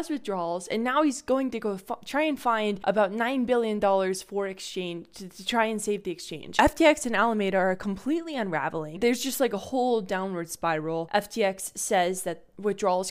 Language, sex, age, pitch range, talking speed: English, female, 20-39, 185-230 Hz, 190 wpm